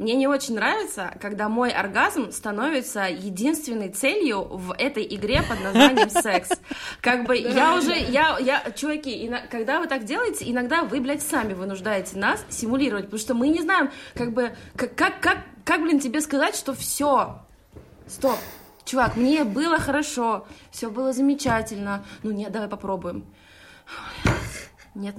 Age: 20-39